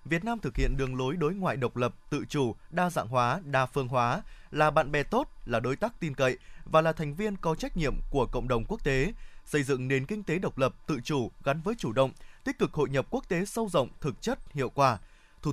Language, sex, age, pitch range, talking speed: Vietnamese, male, 20-39, 135-185 Hz, 250 wpm